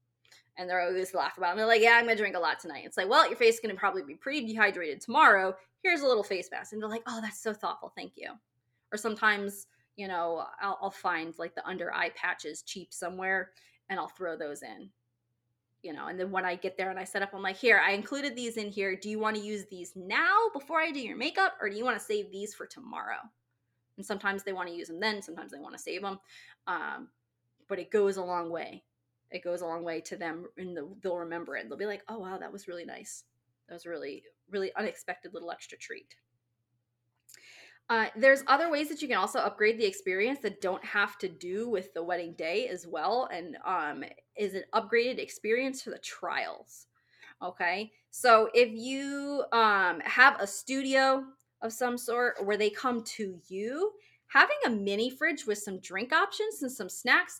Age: 20-39